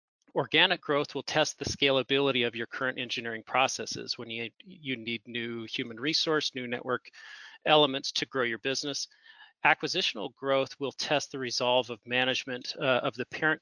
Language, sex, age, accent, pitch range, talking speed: English, male, 30-49, American, 120-145 Hz, 165 wpm